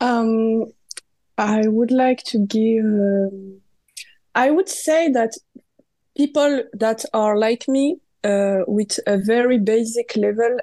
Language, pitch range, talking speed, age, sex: English, 210-245 Hz, 125 wpm, 20-39, female